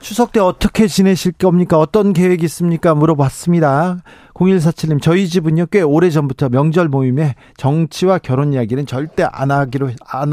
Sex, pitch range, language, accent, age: male, 140-185 Hz, Korean, native, 40-59